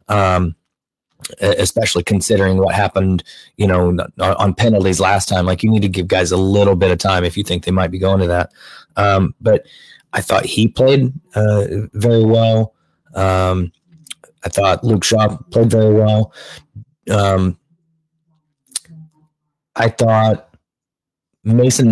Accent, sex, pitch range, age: American, male, 95-115 Hz, 30-49